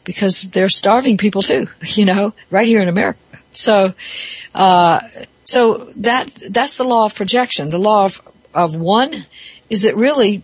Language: English